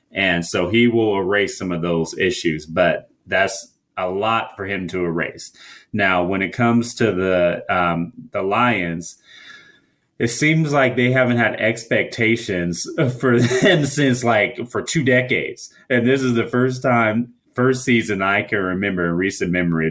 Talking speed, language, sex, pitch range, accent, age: 165 wpm, English, male, 90-115 Hz, American, 30-49